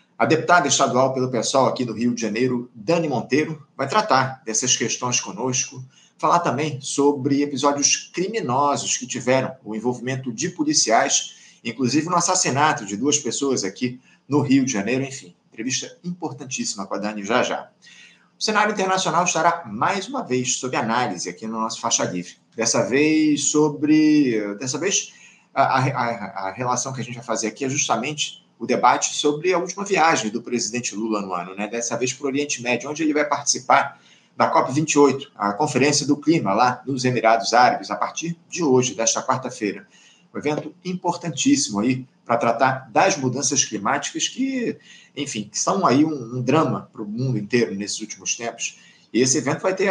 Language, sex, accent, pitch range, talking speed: Portuguese, male, Brazilian, 120-155 Hz, 170 wpm